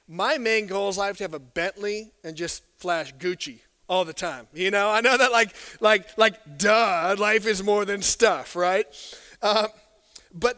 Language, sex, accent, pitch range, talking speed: English, male, American, 165-215 Hz, 195 wpm